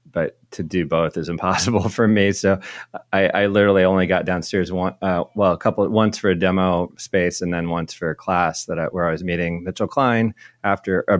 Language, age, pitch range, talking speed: English, 30-49, 90-110 Hz, 220 wpm